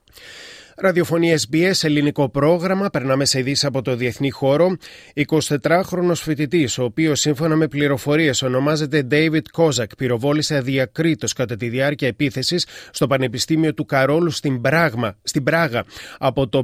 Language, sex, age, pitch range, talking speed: Greek, male, 30-49, 135-160 Hz, 135 wpm